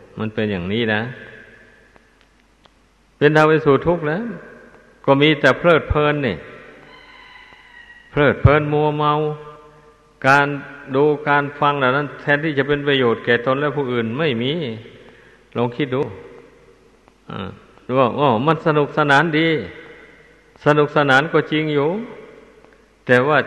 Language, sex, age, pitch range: Thai, male, 60-79, 125-150 Hz